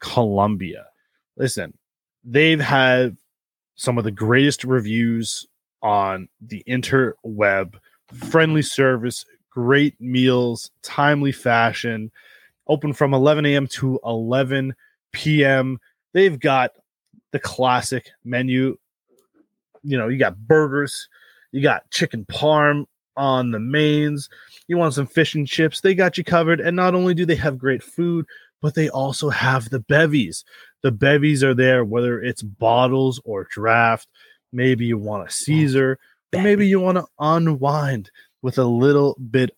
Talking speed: 135 wpm